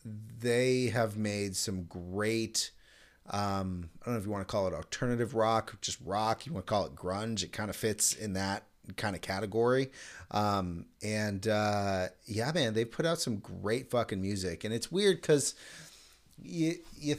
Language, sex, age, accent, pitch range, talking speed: English, male, 30-49, American, 90-115 Hz, 175 wpm